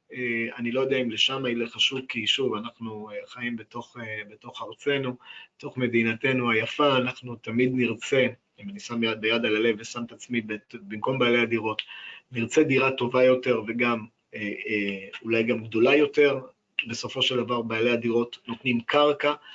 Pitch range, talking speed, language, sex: 110-135 Hz, 150 wpm, Hebrew, male